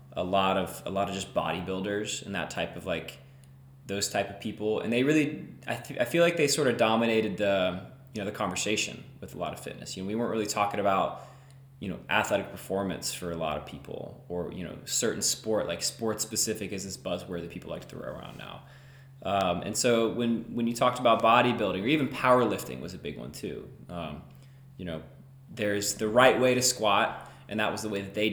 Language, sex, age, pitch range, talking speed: English, male, 20-39, 100-130 Hz, 225 wpm